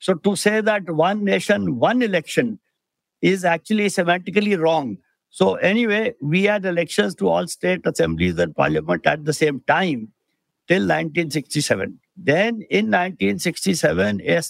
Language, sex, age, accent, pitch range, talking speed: English, male, 60-79, Indian, 155-200 Hz, 135 wpm